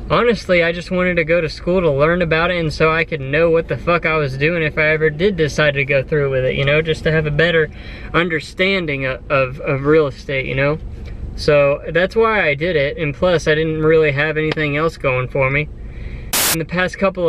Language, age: English, 20-39